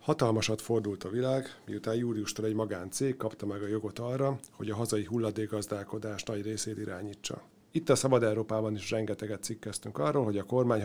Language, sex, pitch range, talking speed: Hungarian, male, 105-125 Hz, 170 wpm